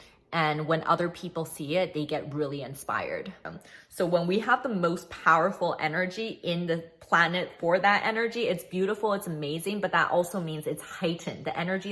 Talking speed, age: 185 wpm, 20-39